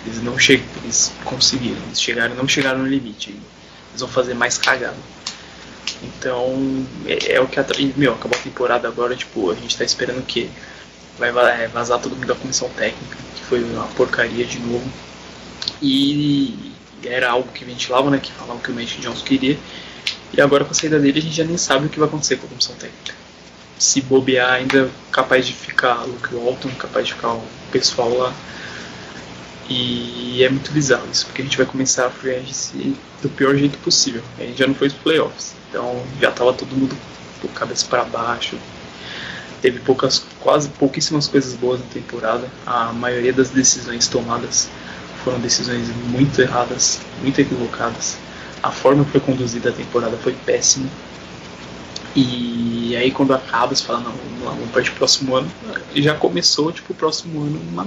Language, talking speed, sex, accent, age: Portuguese, 185 wpm, male, Brazilian, 20-39